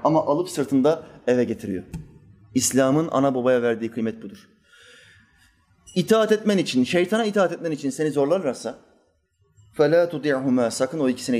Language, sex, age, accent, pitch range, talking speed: Turkish, male, 30-49, native, 115-185 Hz, 130 wpm